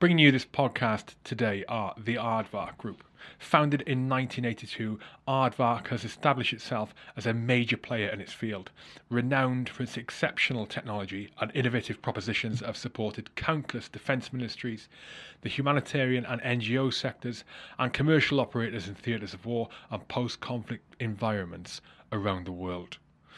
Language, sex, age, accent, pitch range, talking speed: English, male, 30-49, British, 110-130 Hz, 140 wpm